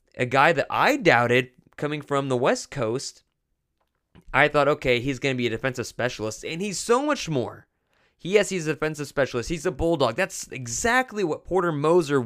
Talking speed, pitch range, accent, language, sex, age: 185 wpm, 130-185 Hz, American, English, male, 20-39